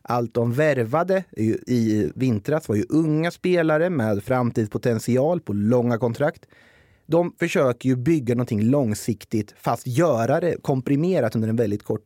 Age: 30-49